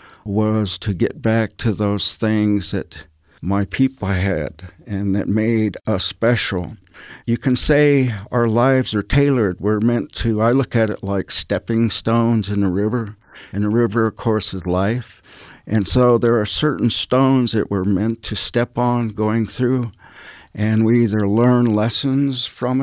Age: 60-79